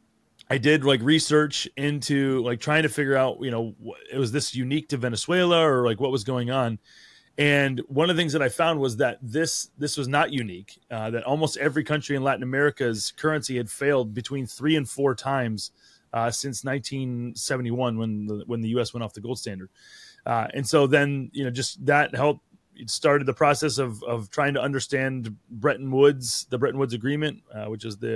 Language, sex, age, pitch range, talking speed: English, male, 30-49, 120-140 Hz, 205 wpm